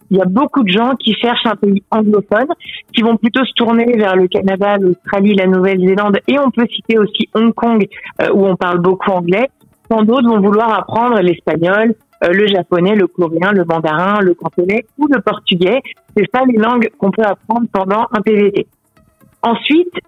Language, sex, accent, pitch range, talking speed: French, female, French, 190-235 Hz, 190 wpm